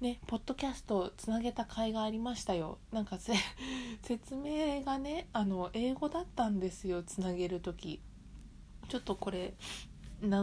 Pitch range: 180-220 Hz